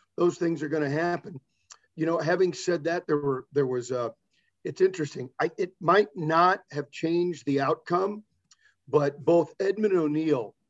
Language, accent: English, American